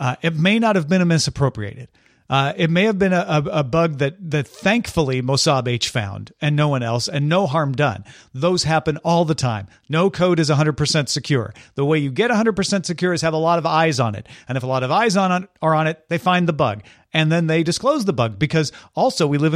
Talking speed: 245 wpm